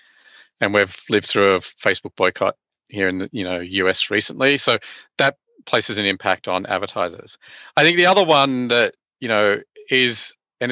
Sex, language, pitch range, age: male, English, 100-130 Hz, 30-49